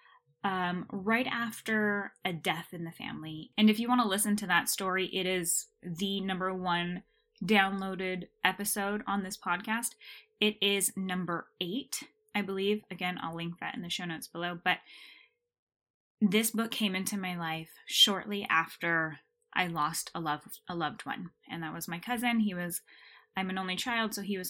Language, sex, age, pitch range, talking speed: English, female, 10-29, 175-220 Hz, 175 wpm